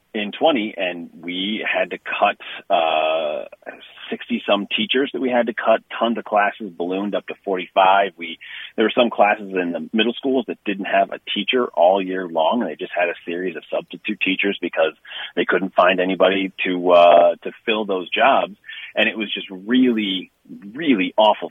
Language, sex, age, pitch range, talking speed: English, male, 30-49, 85-110 Hz, 190 wpm